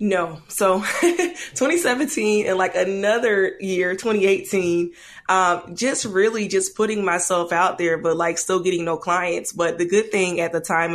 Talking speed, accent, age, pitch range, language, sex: 160 wpm, American, 20-39, 170-190 Hz, English, female